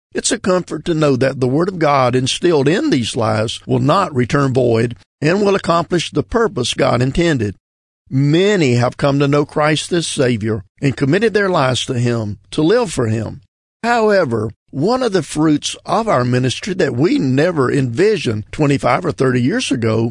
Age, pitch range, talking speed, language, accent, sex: 50-69, 120-155 Hz, 180 wpm, English, American, male